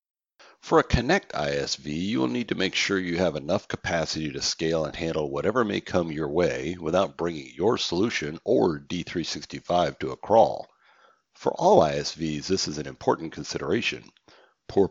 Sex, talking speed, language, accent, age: male, 165 wpm, English, American, 60-79